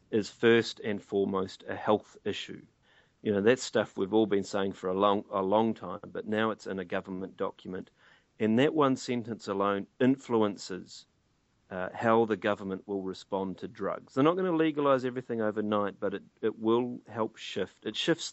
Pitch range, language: 95-115 Hz, English